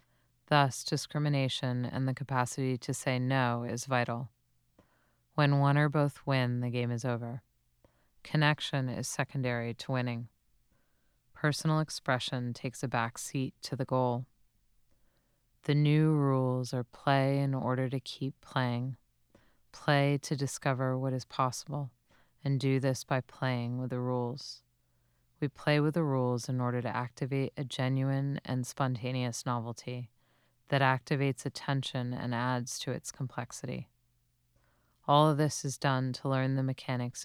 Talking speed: 140 wpm